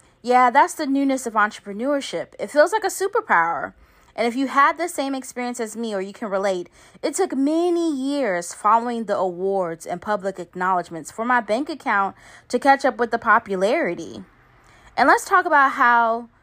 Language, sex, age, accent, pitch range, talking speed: English, female, 20-39, American, 200-275 Hz, 180 wpm